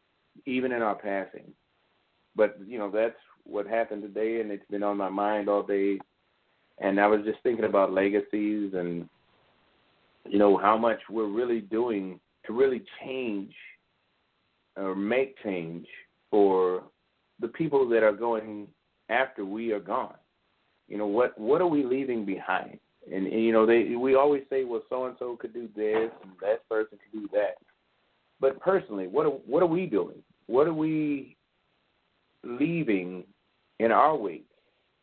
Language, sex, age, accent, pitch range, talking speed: English, male, 40-59, American, 105-135 Hz, 160 wpm